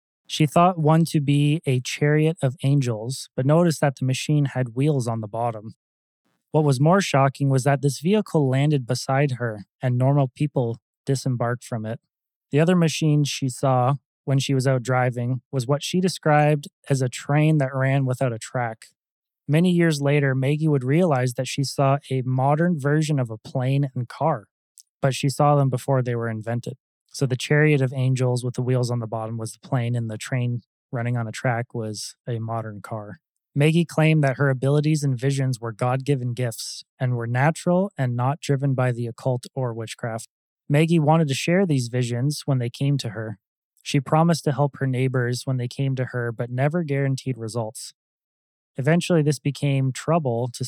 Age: 20-39